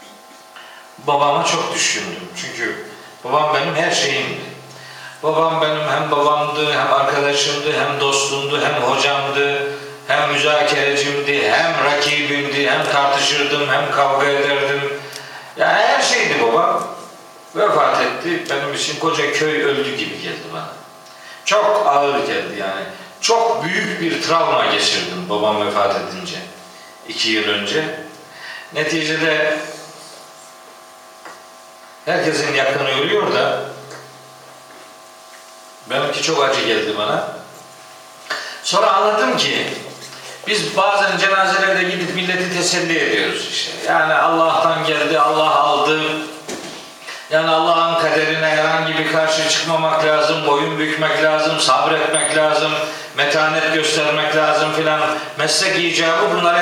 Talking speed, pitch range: 110 wpm, 140-160 Hz